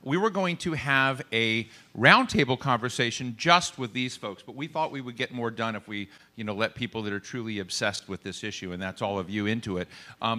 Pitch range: 115-145 Hz